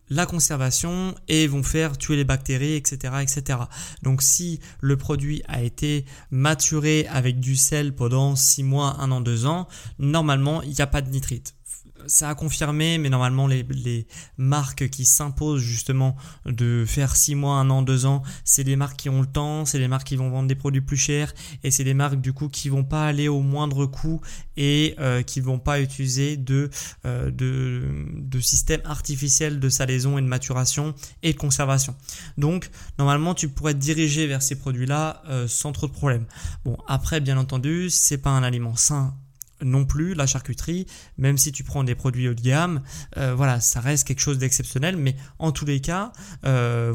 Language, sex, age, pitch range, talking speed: French, male, 20-39, 130-150 Hz, 195 wpm